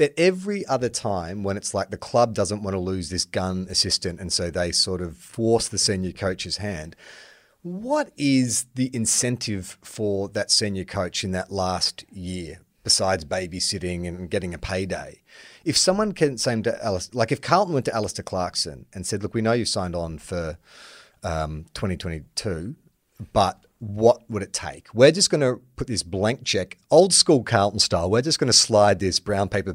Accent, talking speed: Australian, 190 wpm